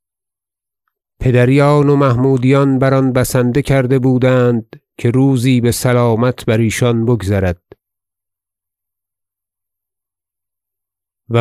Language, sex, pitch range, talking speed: Persian, male, 105-135 Hz, 85 wpm